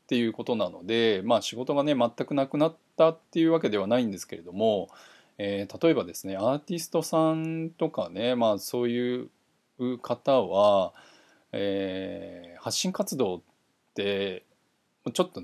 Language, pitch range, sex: Japanese, 100-135 Hz, male